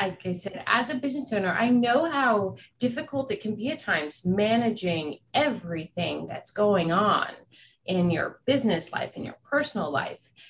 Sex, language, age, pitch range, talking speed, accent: female, English, 30-49, 170-225 Hz, 165 wpm, American